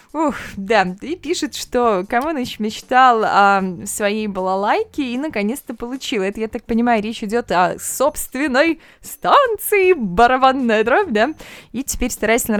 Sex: female